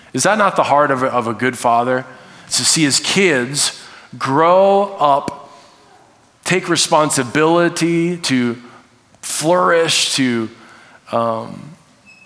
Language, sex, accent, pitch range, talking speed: English, male, American, 115-145 Hz, 110 wpm